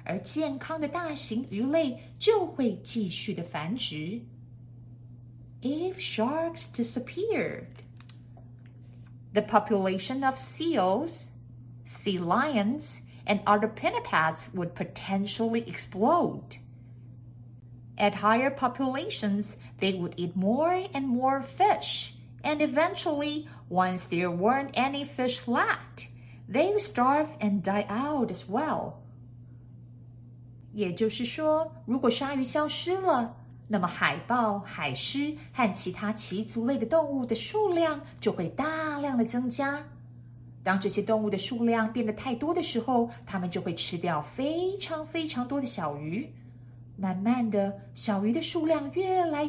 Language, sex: Chinese, female